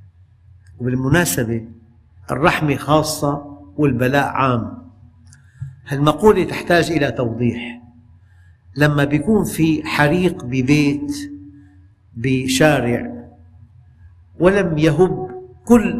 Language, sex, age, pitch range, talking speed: Arabic, male, 50-69, 115-160 Hz, 70 wpm